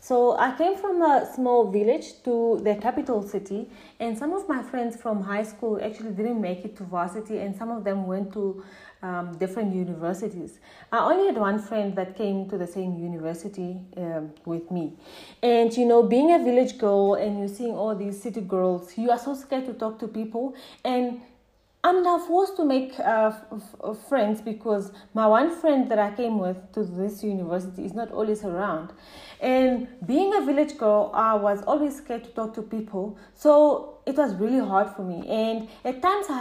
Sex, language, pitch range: female, English, 200-260 Hz